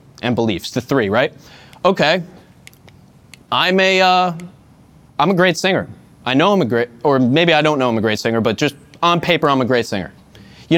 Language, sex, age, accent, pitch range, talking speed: English, male, 20-39, American, 125-170 Hz, 200 wpm